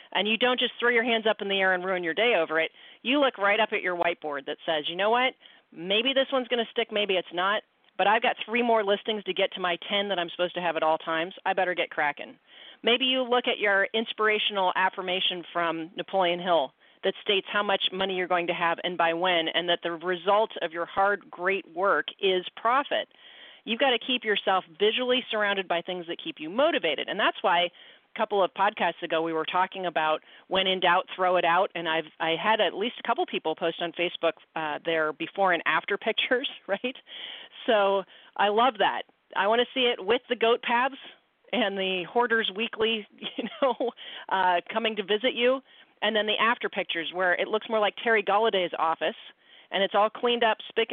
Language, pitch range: English, 175-225 Hz